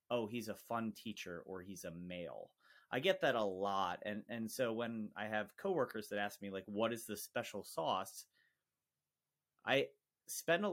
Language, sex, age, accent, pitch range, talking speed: English, male, 30-49, American, 105-140 Hz, 185 wpm